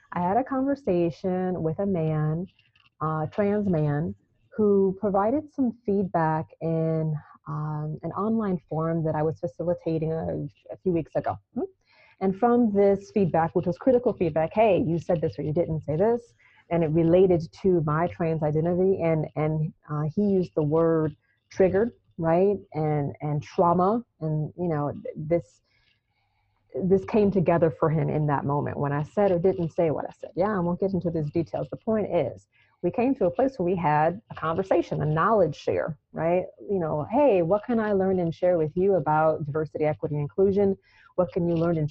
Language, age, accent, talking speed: English, 30-49, American, 185 wpm